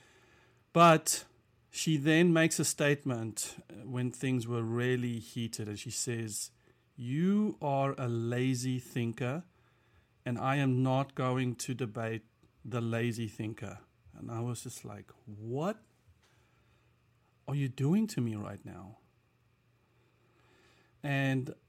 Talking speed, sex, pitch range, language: 120 wpm, male, 120-150 Hz, English